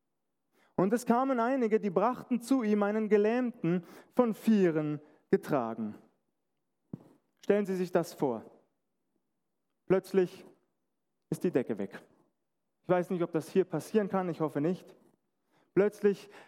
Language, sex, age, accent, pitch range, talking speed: German, male, 30-49, German, 185-230 Hz, 125 wpm